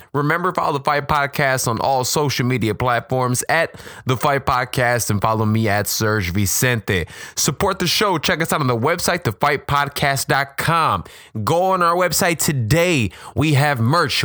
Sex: male